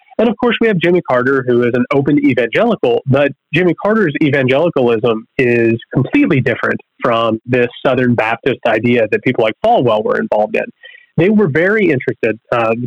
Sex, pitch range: male, 120-155 Hz